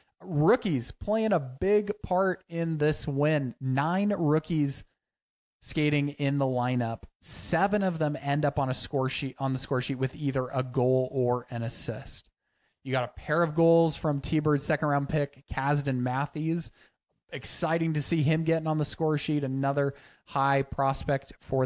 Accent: American